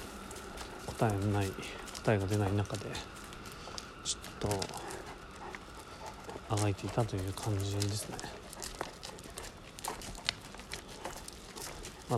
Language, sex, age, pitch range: Japanese, male, 30-49, 100-120 Hz